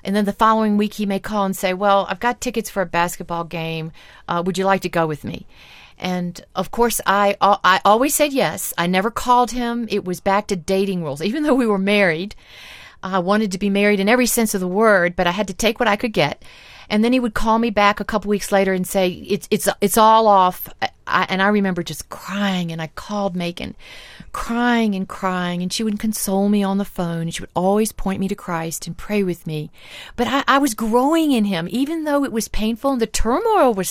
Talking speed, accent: 240 wpm, American